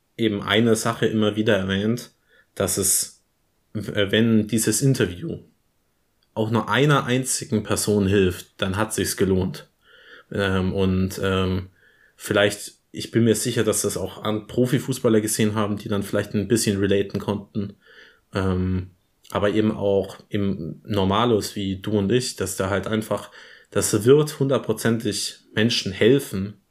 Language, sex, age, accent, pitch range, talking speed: German, male, 20-39, German, 95-110 Hz, 140 wpm